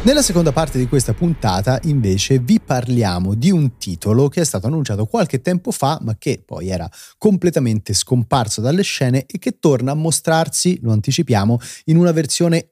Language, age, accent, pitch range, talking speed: Italian, 30-49, native, 110-155 Hz, 175 wpm